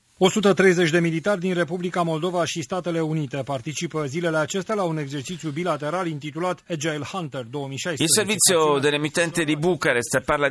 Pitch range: 110-150 Hz